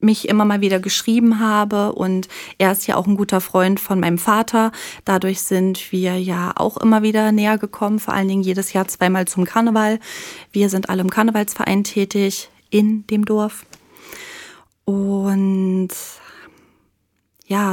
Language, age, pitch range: German, 30-49, 195-225 Hz